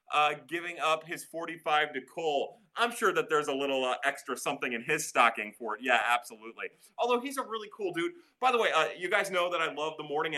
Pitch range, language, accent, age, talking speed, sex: 130-190 Hz, English, American, 30-49, 235 wpm, male